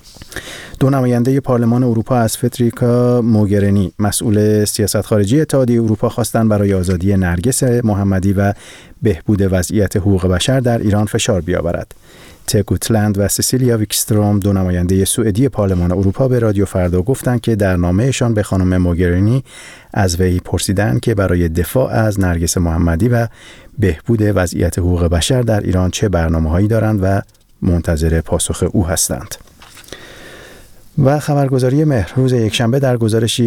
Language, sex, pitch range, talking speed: Persian, male, 95-120 Hz, 135 wpm